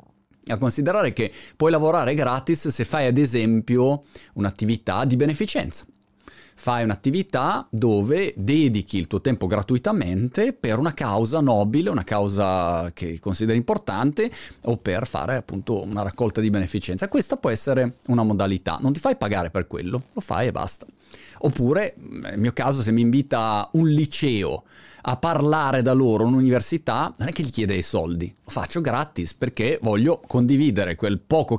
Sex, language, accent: male, Italian, native